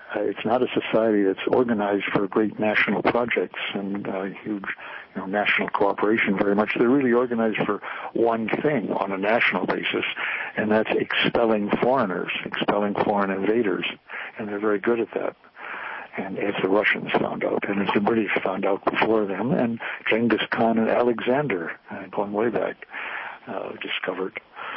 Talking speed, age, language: 175 wpm, 60-79, English